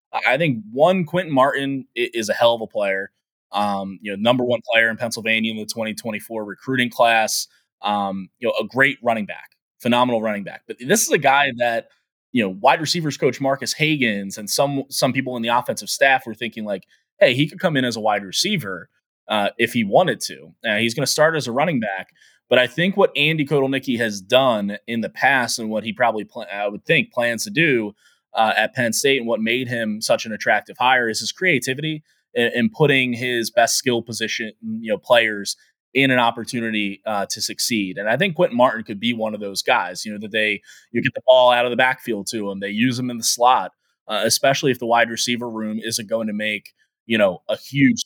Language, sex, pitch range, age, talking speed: English, male, 110-135 Hz, 20-39, 225 wpm